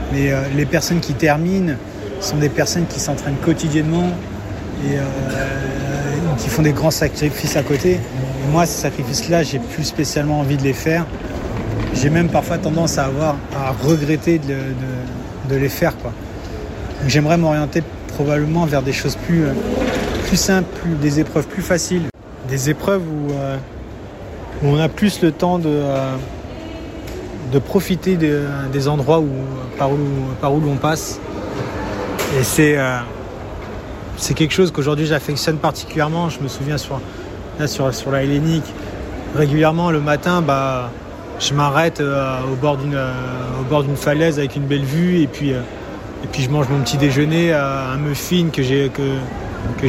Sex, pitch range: male, 130-155 Hz